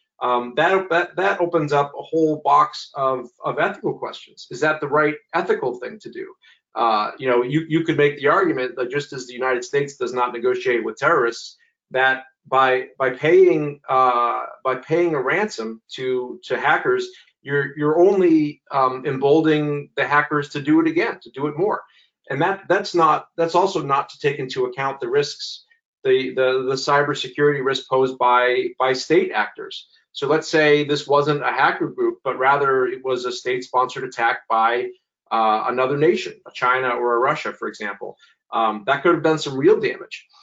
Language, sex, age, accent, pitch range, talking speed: English, male, 40-59, American, 130-195 Hz, 185 wpm